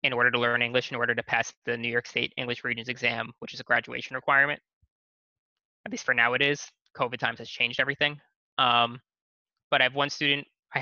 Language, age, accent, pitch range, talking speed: English, 20-39, American, 120-140 Hz, 215 wpm